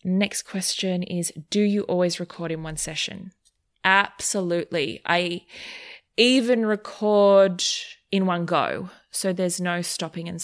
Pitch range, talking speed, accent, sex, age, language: 165-195 Hz, 125 wpm, Australian, female, 20-39, English